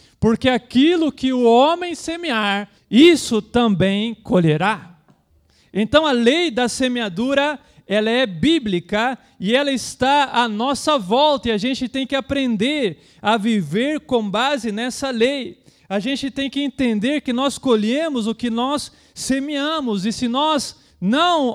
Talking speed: 140 wpm